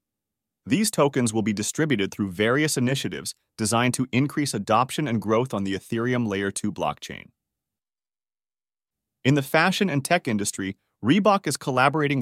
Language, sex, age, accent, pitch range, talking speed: English, male, 30-49, American, 105-140 Hz, 145 wpm